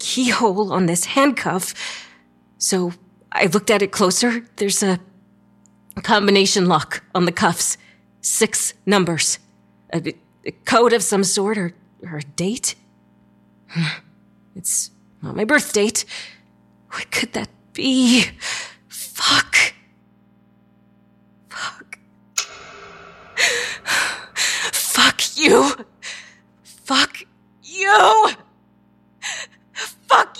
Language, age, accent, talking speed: English, 30-49, American, 90 wpm